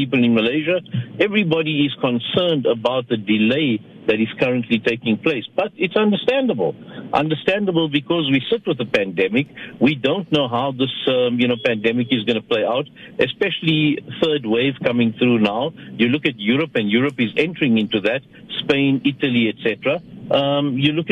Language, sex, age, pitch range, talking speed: English, male, 60-79, 125-165 Hz, 170 wpm